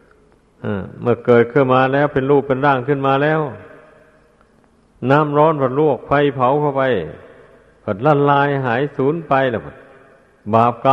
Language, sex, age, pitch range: Thai, male, 60-79, 115-135 Hz